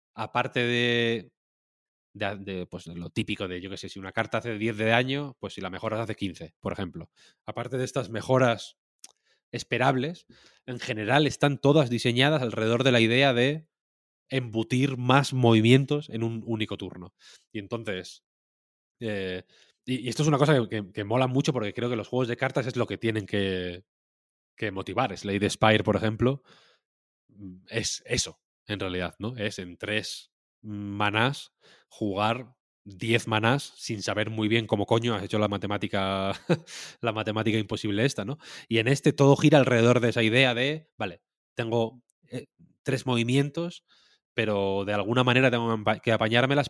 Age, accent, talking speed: 20-39, Spanish, 165 wpm